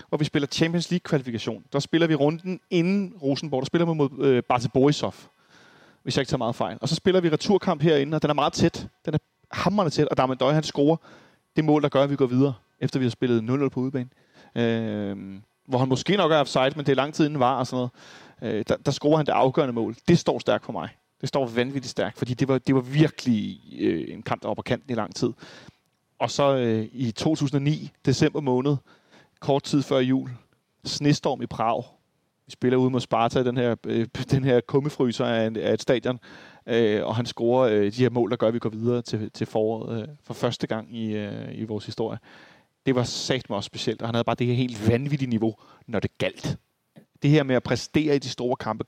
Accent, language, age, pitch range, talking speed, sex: native, Danish, 30-49, 115-145 Hz, 220 wpm, male